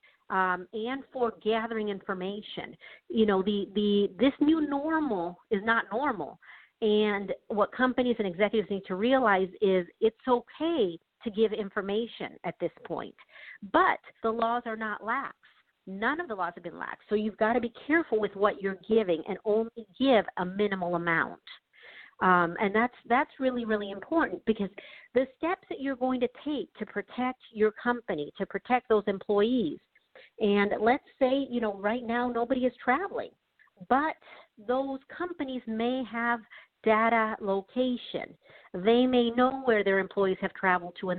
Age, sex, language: 50-69, female, English